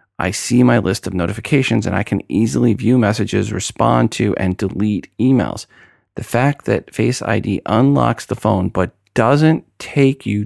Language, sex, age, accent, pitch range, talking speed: English, male, 40-59, American, 95-115 Hz, 165 wpm